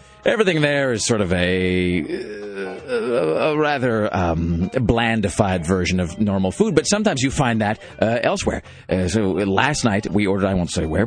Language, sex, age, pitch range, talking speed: English, male, 40-59, 100-130 Hz, 170 wpm